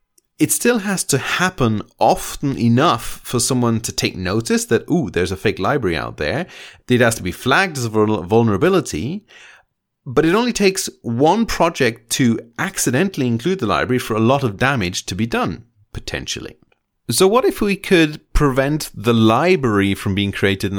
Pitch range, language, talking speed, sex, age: 110-175 Hz, English, 175 wpm, male, 30-49